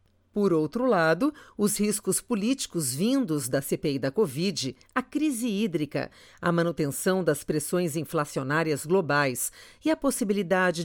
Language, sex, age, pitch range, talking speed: Portuguese, female, 50-69, 140-210 Hz, 125 wpm